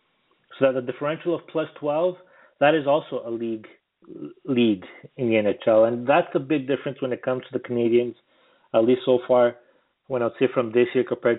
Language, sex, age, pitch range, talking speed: English, male, 30-49, 115-145 Hz, 205 wpm